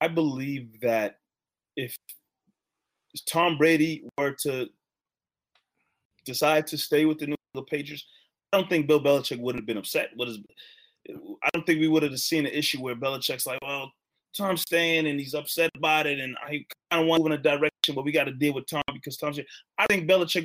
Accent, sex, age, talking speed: American, male, 20-39, 200 wpm